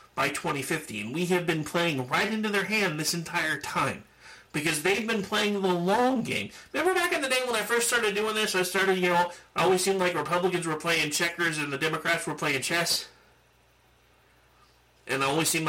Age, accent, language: 30-49, American, English